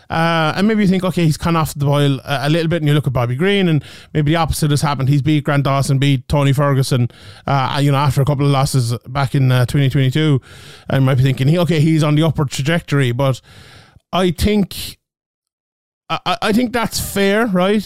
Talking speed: 220 wpm